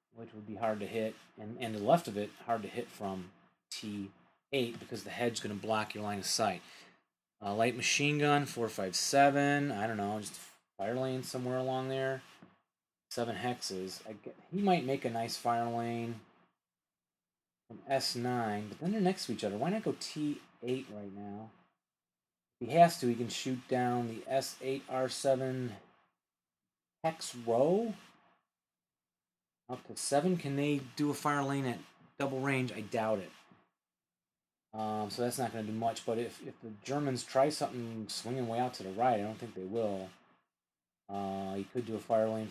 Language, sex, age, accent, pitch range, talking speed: English, male, 30-49, American, 105-135 Hz, 180 wpm